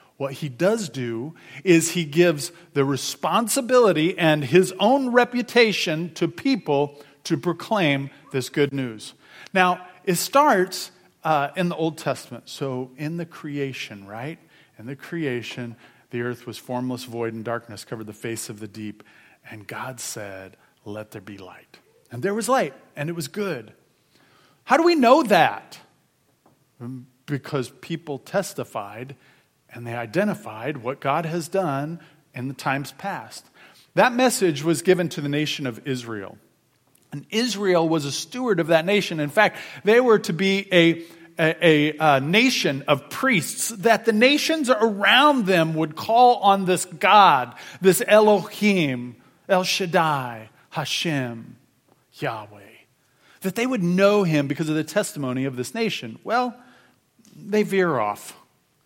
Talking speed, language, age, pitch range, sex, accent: 145 wpm, English, 40-59, 130-190 Hz, male, American